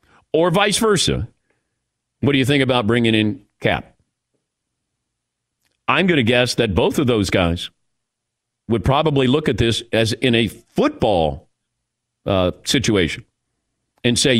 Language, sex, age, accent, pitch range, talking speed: English, male, 50-69, American, 120-155 Hz, 140 wpm